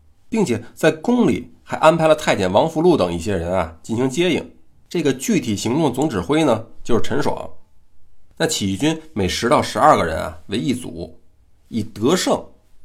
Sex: male